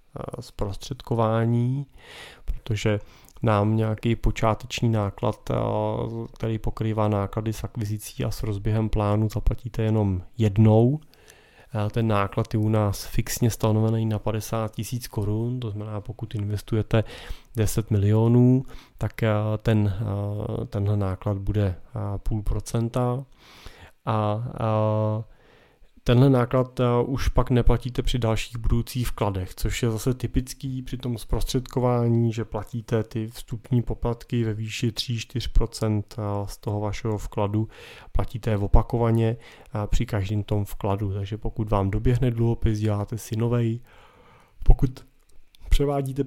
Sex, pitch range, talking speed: male, 105-120 Hz, 115 wpm